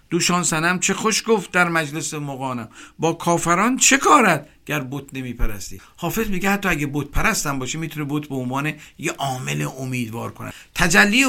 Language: Persian